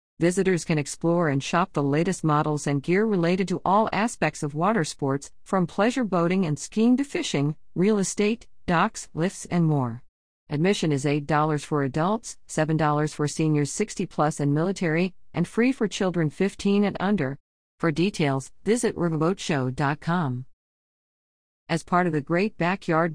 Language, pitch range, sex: English, 145-190 Hz, female